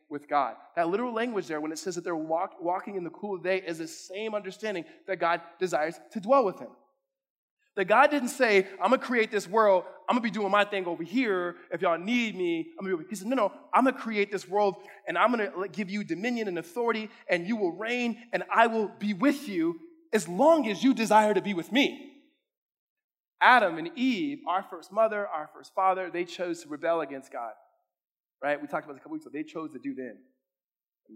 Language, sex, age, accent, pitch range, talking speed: English, male, 20-39, American, 175-240 Hz, 240 wpm